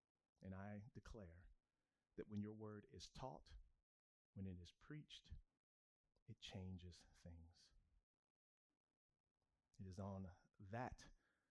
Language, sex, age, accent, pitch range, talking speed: English, male, 40-59, American, 95-125 Hz, 105 wpm